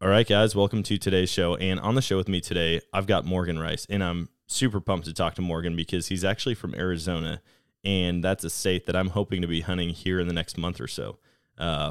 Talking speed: 240 wpm